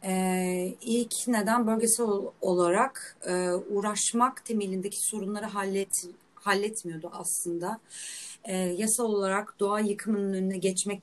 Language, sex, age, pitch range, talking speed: Turkish, female, 30-49, 185-235 Hz, 105 wpm